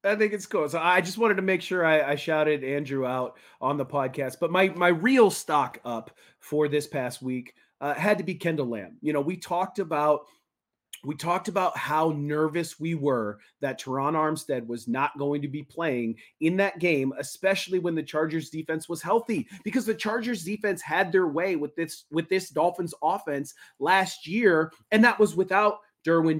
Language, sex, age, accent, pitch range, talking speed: English, male, 30-49, American, 145-180 Hz, 195 wpm